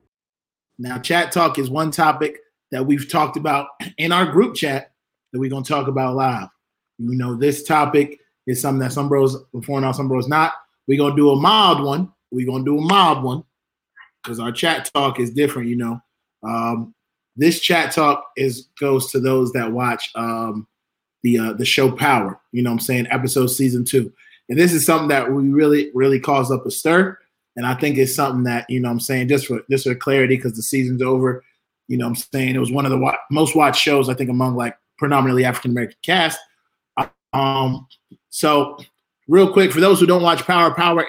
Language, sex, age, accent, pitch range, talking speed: English, male, 30-49, American, 125-145 Hz, 210 wpm